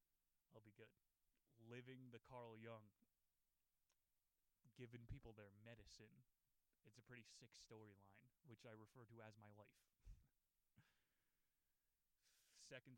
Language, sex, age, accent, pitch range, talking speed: English, male, 20-39, American, 110-130 Hz, 105 wpm